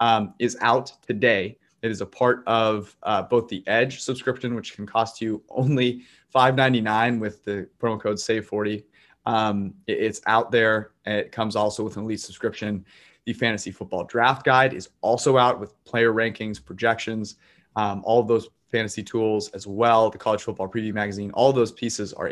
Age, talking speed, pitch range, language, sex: 20-39, 170 wpm, 100-120 Hz, English, male